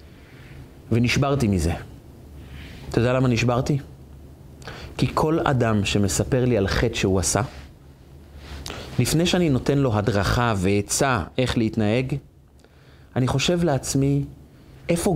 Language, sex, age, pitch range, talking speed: Hebrew, male, 30-49, 100-140 Hz, 105 wpm